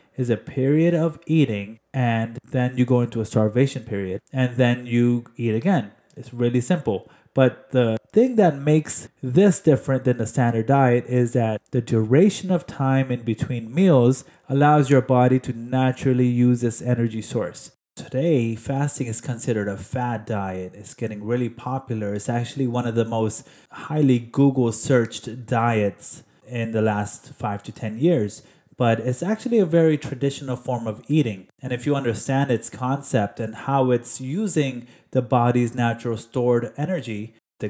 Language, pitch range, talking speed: English, 115-140 Hz, 160 wpm